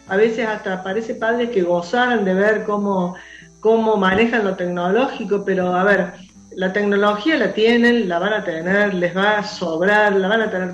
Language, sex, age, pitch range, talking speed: Spanish, female, 50-69, 180-225 Hz, 185 wpm